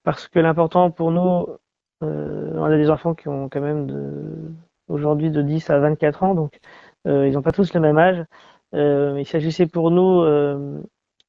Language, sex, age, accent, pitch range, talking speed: French, male, 30-49, French, 150-175 Hz, 195 wpm